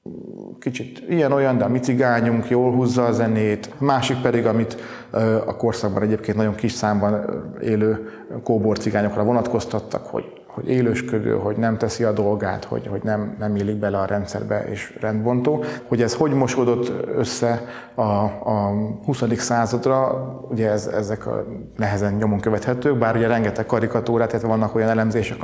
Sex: male